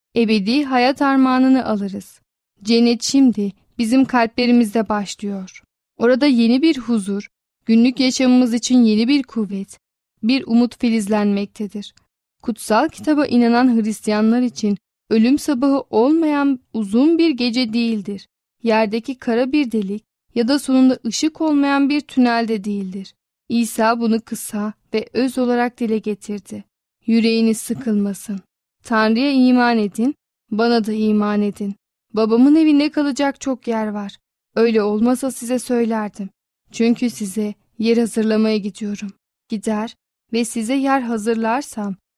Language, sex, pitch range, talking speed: Turkish, female, 215-255 Hz, 120 wpm